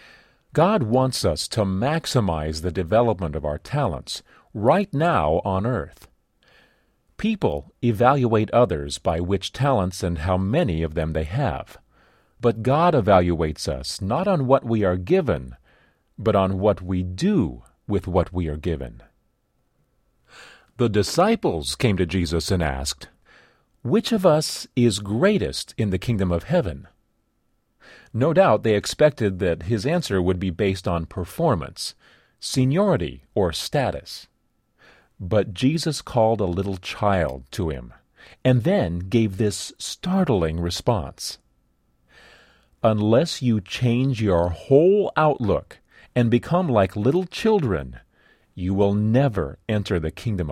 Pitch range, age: 90-125 Hz, 40-59